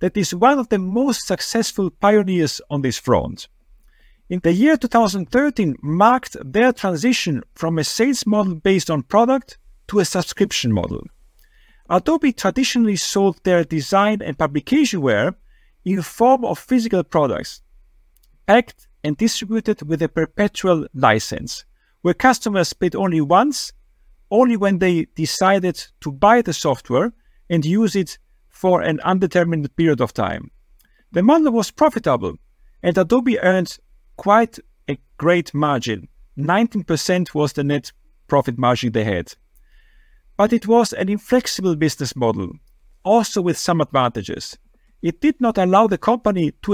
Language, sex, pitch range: English, male, 160-230 Hz